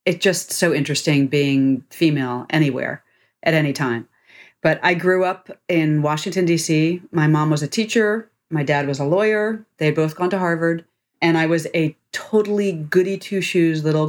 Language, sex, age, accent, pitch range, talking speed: English, female, 40-59, American, 145-175 Hz, 175 wpm